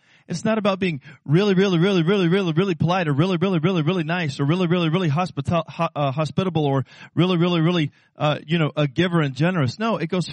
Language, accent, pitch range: English, American, 130-165 Hz